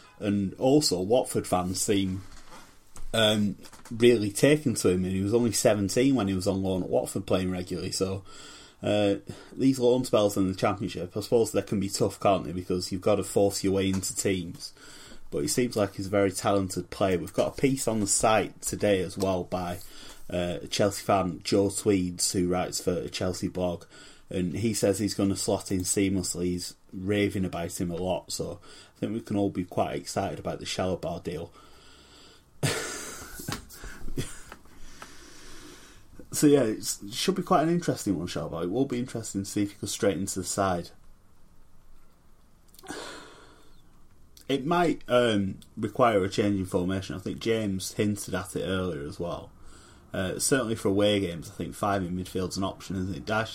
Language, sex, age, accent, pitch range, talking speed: English, male, 30-49, British, 95-110 Hz, 185 wpm